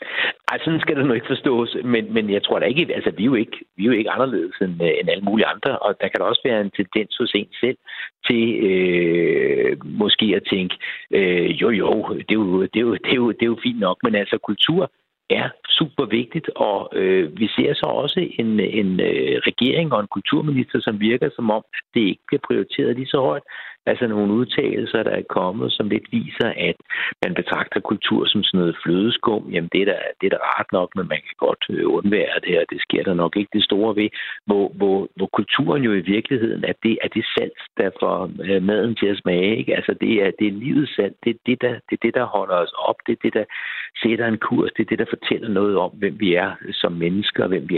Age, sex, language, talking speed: 60-79, male, Danish, 220 wpm